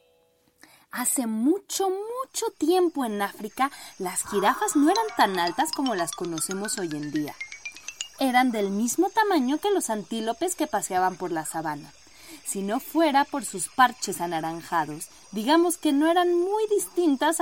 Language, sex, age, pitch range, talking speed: Spanish, female, 30-49, 195-325 Hz, 150 wpm